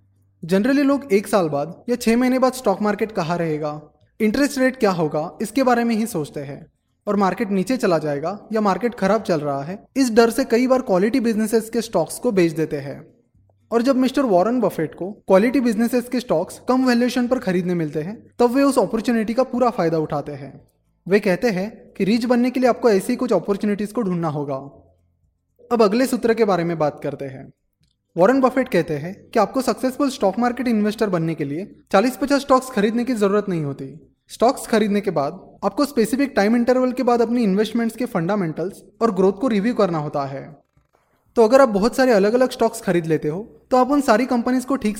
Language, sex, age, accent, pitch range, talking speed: Hindi, male, 20-39, native, 165-245 Hz, 175 wpm